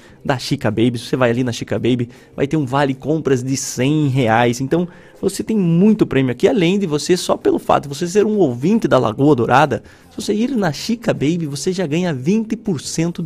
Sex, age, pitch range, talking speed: male, 20-39, 125-170 Hz, 215 wpm